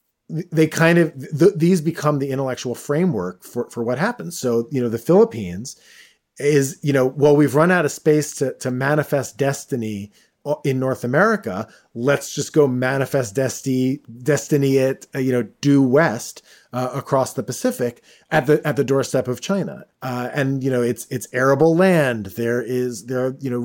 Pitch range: 120-140 Hz